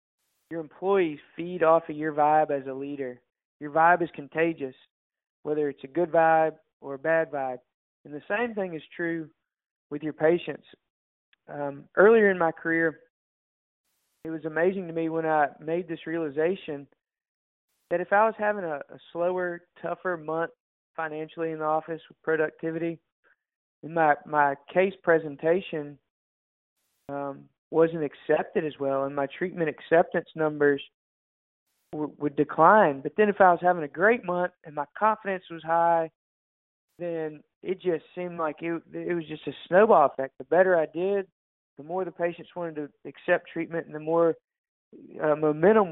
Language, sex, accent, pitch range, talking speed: English, male, American, 150-175 Hz, 160 wpm